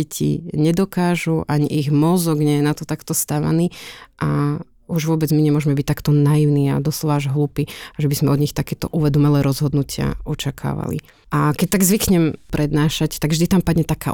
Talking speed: 175 wpm